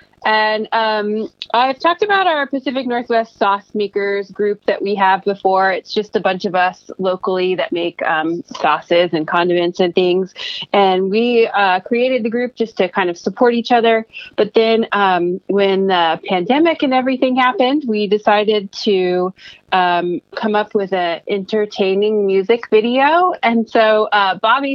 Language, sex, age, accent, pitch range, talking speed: English, female, 30-49, American, 185-225 Hz, 160 wpm